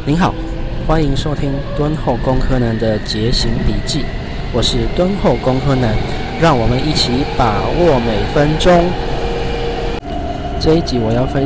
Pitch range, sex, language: 115-145 Hz, male, Chinese